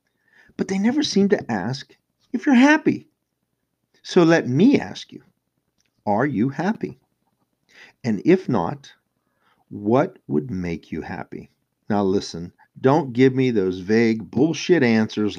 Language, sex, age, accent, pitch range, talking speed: English, male, 50-69, American, 105-160 Hz, 135 wpm